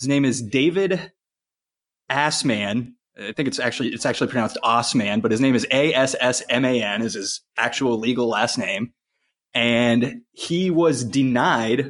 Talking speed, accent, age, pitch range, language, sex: 140 wpm, American, 20-39, 110-130 Hz, English, male